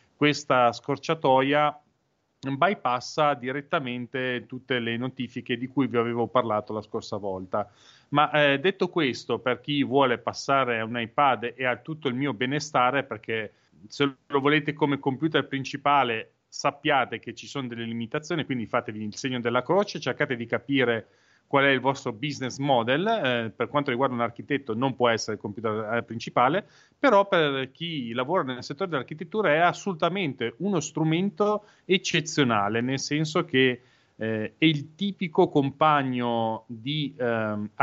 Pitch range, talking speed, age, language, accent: 120-150 Hz, 150 wpm, 30-49, Italian, native